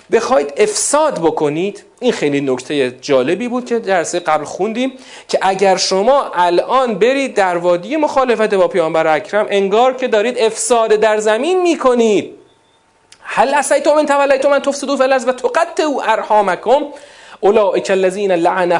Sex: male